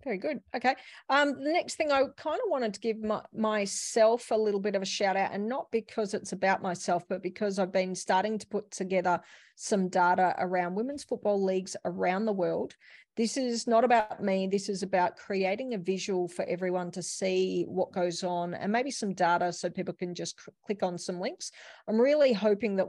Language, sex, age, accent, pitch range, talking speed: English, female, 40-59, Australian, 180-210 Hz, 200 wpm